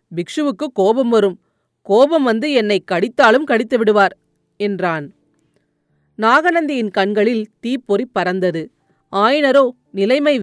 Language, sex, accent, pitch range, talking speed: Tamil, female, native, 200-265 Hz, 90 wpm